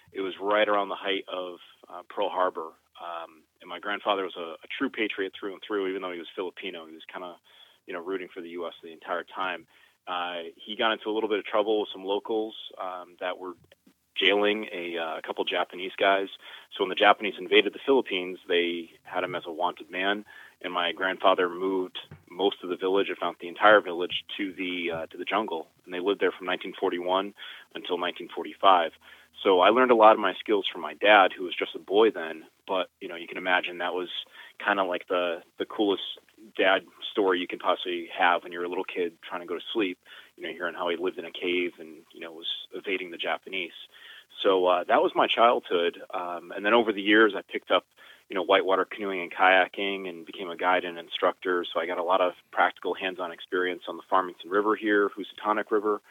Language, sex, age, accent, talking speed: English, male, 30-49, American, 220 wpm